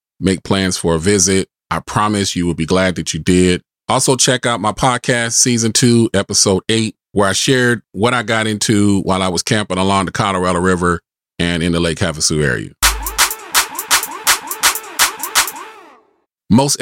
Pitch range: 90-120 Hz